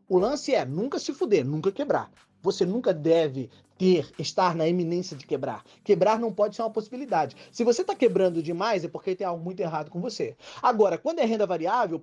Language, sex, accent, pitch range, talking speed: Portuguese, male, Brazilian, 185-260 Hz, 205 wpm